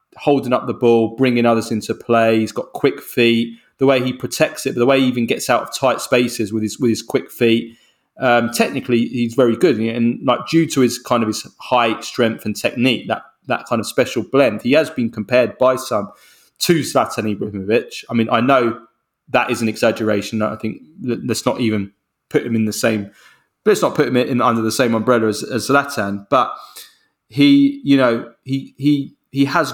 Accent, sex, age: British, male, 20-39